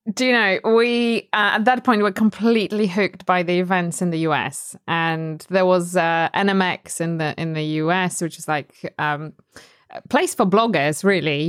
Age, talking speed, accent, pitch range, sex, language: 20-39, 190 wpm, British, 180-230 Hz, female, English